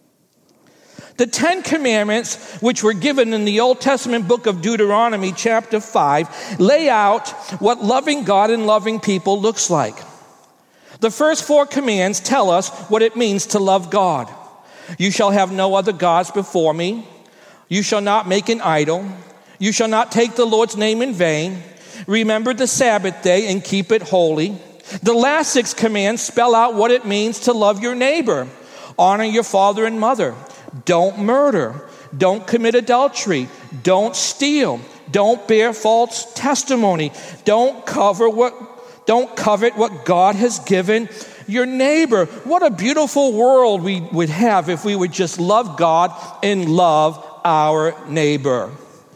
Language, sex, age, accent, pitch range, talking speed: English, male, 50-69, American, 180-235 Hz, 155 wpm